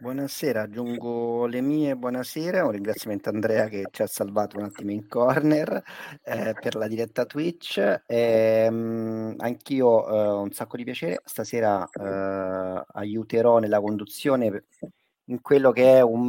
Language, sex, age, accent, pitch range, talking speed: Italian, male, 30-49, native, 105-130 Hz, 140 wpm